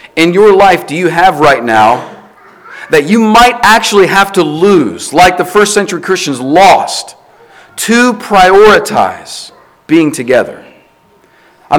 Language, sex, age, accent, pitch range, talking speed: English, male, 40-59, American, 135-175 Hz, 130 wpm